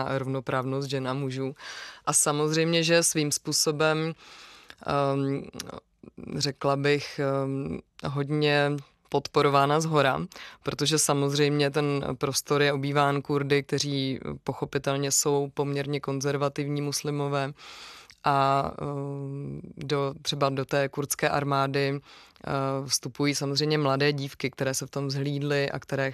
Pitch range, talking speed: 130-145 Hz, 115 wpm